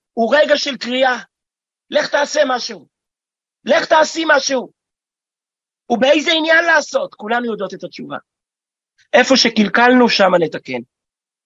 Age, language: 40-59, Hebrew